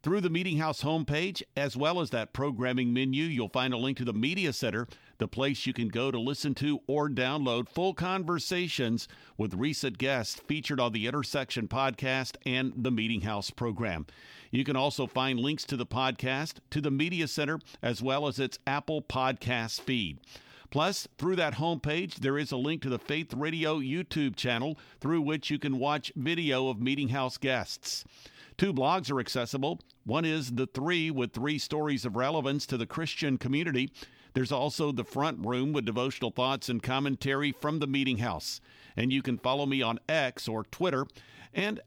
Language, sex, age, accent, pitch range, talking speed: English, male, 50-69, American, 125-150 Hz, 185 wpm